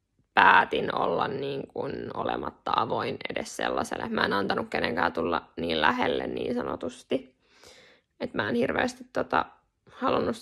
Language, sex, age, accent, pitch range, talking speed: Finnish, female, 10-29, native, 205-255 Hz, 130 wpm